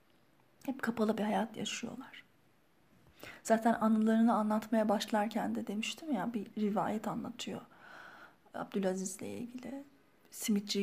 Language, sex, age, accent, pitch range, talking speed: Turkish, female, 30-49, native, 205-235 Hz, 100 wpm